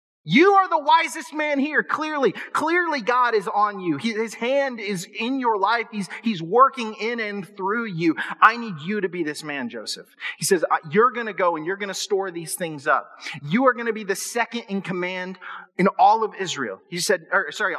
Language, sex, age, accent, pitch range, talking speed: English, male, 30-49, American, 170-235 Hz, 215 wpm